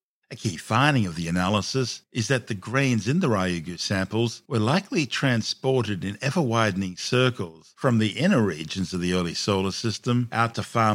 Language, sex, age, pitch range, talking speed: English, male, 50-69, 95-125 Hz, 175 wpm